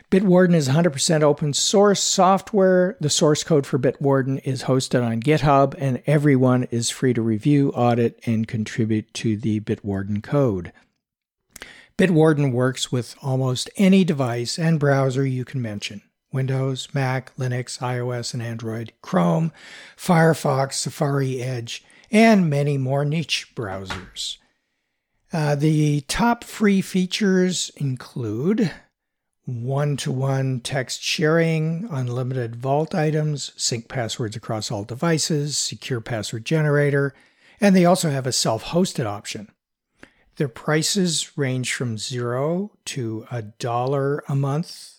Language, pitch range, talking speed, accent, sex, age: English, 125-155 Hz, 120 wpm, American, male, 60-79